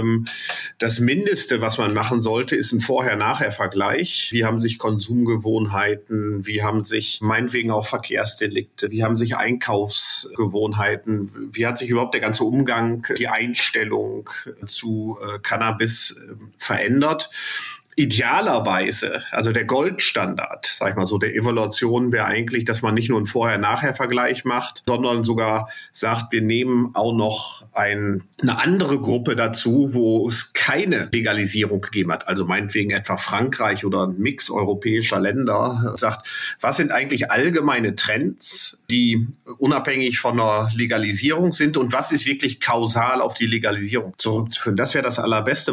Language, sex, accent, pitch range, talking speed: English, male, German, 110-125 Hz, 140 wpm